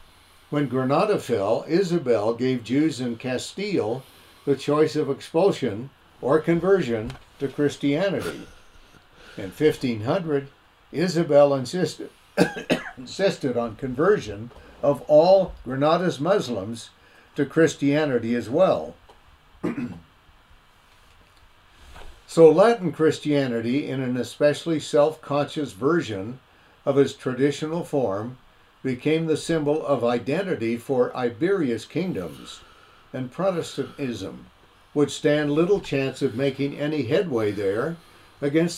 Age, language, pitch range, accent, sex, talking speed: 60-79, English, 120-155 Hz, American, male, 95 wpm